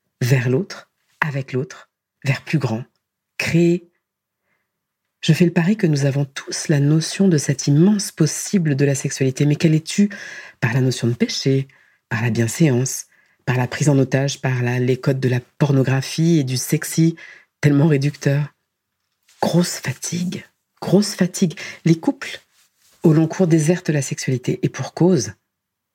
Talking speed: 160 wpm